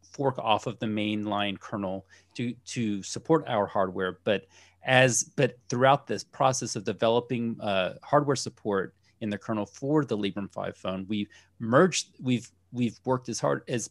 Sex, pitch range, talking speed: male, 100-130 Hz, 165 wpm